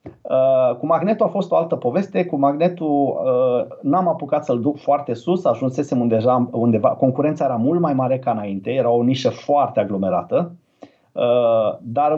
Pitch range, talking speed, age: 125-170 Hz, 155 wpm, 30-49